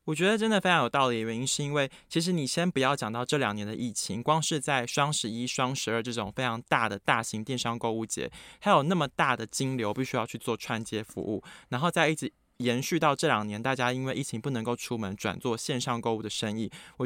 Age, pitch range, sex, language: 20-39, 110-145 Hz, male, Chinese